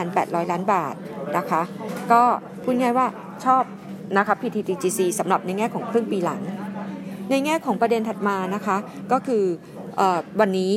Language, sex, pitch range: Thai, female, 185-225 Hz